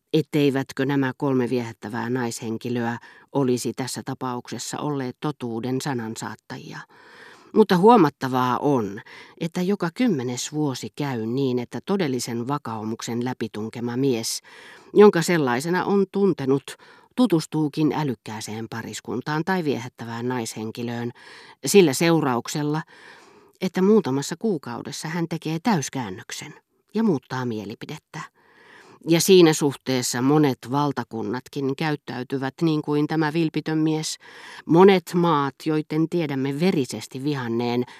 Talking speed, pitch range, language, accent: 100 wpm, 125-165 Hz, Finnish, native